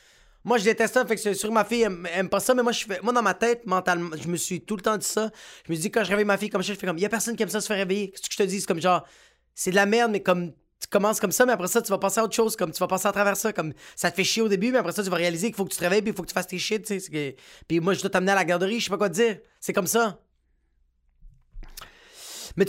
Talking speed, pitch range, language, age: 355 wpm, 180-230 Hz, French, 30-49